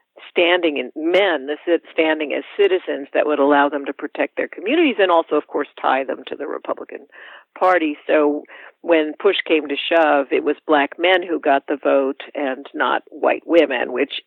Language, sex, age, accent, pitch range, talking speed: English, female, 50-69, American, 155-200 Hz, 185 wpm